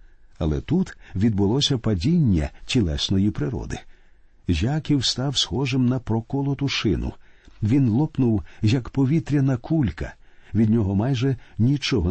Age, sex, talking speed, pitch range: 50-69, male, 105 wpm, 100-130 Hz